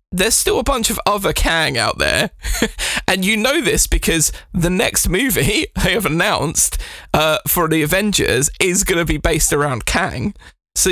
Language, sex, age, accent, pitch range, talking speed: English, male, 20-39, British, 145-210 Hz, 175 wpm